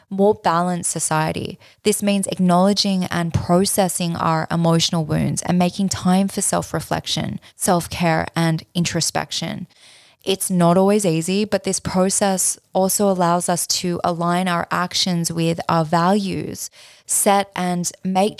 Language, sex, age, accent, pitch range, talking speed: English, female, 20-39, Australian, 170-195 Hz, 125 wpm